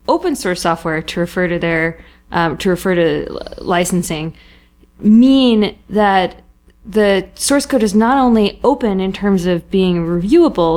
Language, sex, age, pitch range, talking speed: English, female, 20-39, 180-230 Hz, 145 wpm